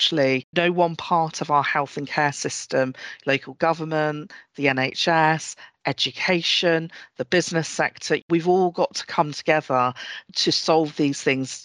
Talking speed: 140 wpm